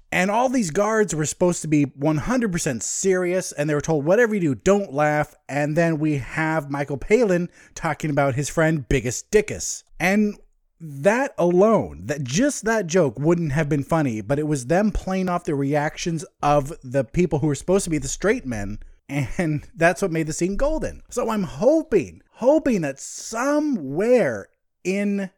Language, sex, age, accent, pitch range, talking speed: English, male, 30-49, American, 150-220 Hz, 175 wpm